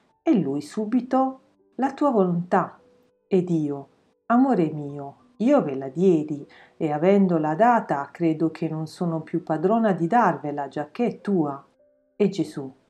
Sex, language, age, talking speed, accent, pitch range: female, Italian, 40-59, 140 wpm, native, 155-240 Hz